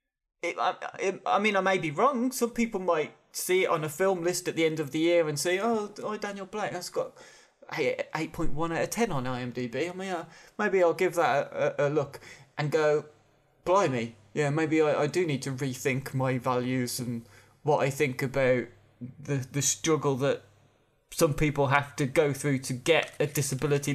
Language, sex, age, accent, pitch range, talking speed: English, male, 20-39, British, 135-170 Hz, 205 wpm